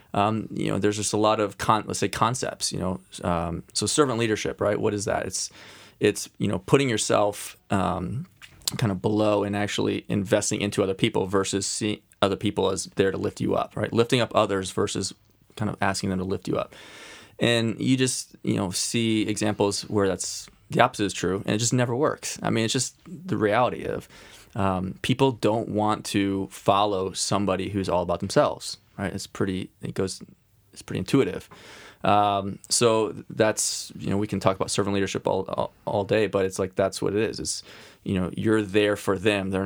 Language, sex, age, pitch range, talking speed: English, male, 20-39, 95-110 Hz, 200 wpm